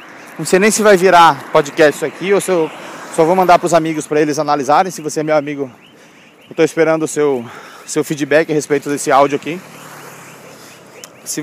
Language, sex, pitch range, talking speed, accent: Portuguese, male, 150-220 Hz, 200 wpm, Brazilian